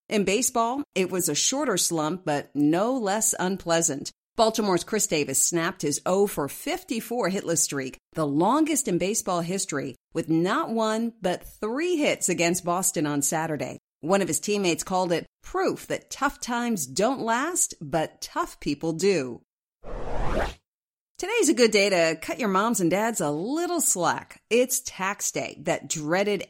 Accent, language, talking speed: American, English, 160 wpm